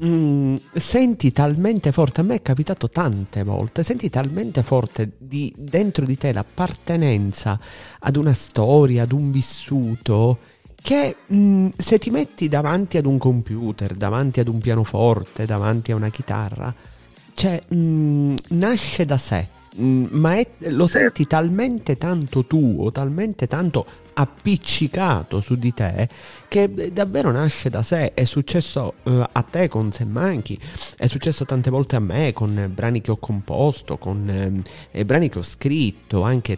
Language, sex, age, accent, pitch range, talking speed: Italian, male, 30-49, native, 115-155 Hz, 145 wpm